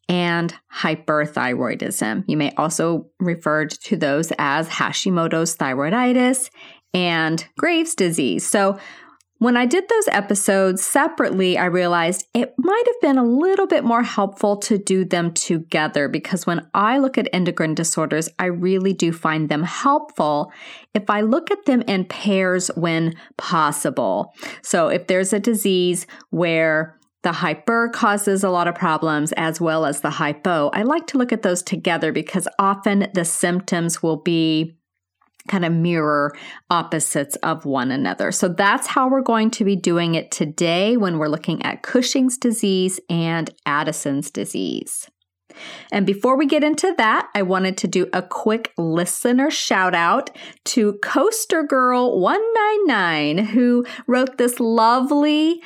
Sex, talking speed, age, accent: female, 145 wpm, 30-49, American